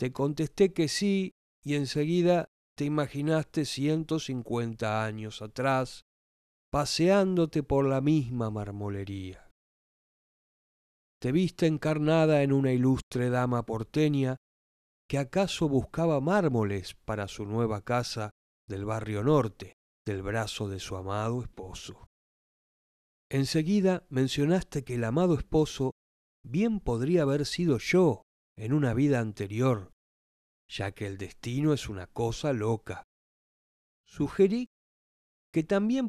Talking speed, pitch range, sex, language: 110 wpm, 100-145 Hz, male, Spanish